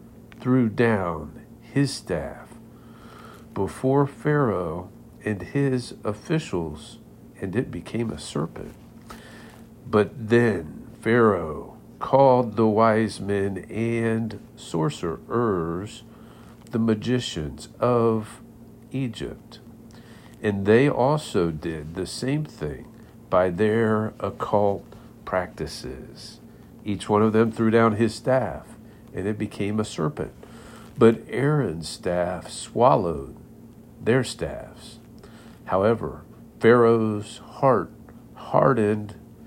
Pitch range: 105-120 Hz